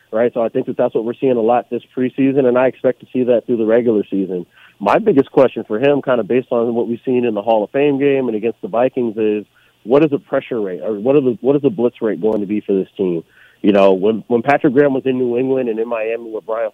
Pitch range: 110-130 Hz